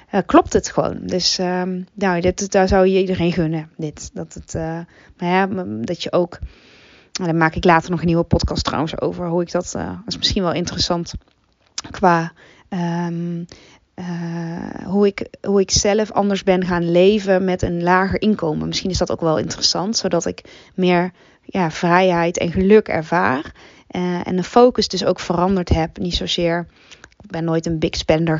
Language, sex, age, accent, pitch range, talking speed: Dutch, female, 20-39, Dutch, 175-205 Hz, 185 wpm